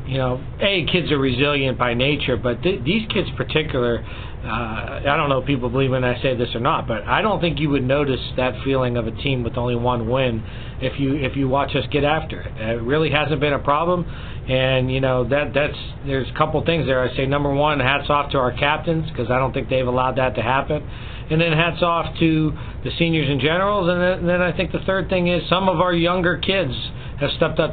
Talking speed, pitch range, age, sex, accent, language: 240 wpm, 130-160 Hz, 40-59, male, American, English